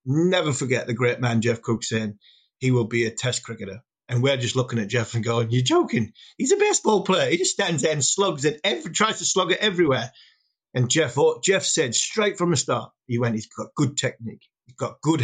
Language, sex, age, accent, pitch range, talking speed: English, male, 30-49, British, 120-155 Hz, 225 wpm